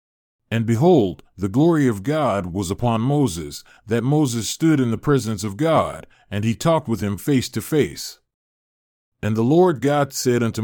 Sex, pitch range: male, 110-140 Hz